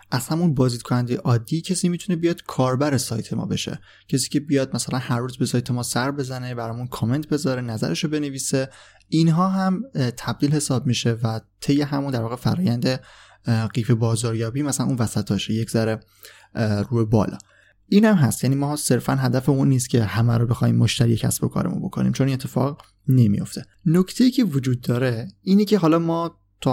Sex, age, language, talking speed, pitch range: male, 20-39, Persian, 175 wpm, 115-145 Hz